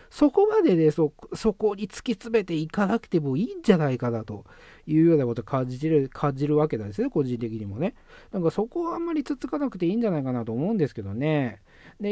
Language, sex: Japanese, male